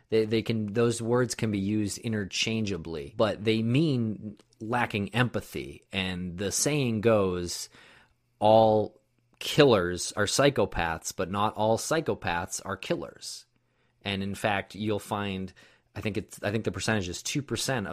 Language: English